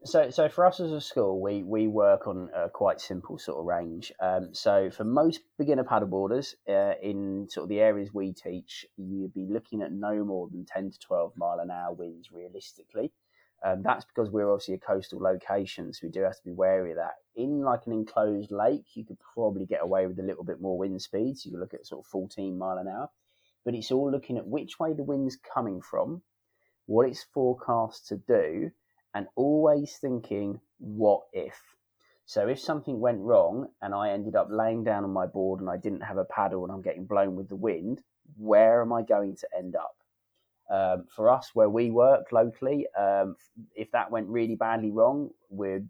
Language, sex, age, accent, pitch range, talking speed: English, male, 20-39, British, 95-115 Hz, 210 wpm